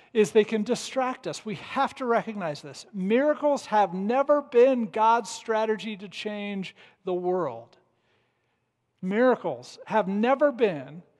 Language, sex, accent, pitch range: English, male, American, 195-270 Hz